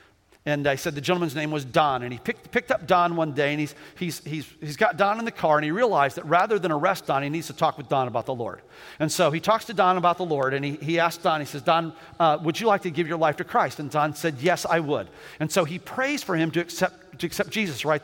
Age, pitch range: 50-69, 160-230 Hz